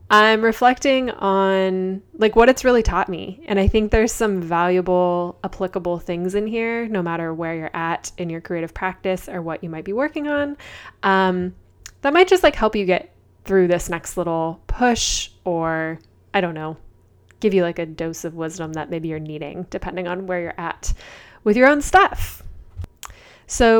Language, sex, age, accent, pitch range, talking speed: English, female, 20-39, American, 170-210 Hz, 185 wpm